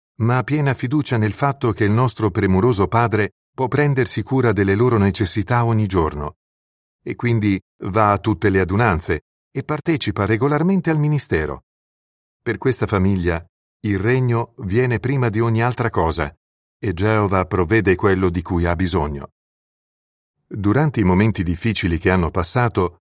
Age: 50-69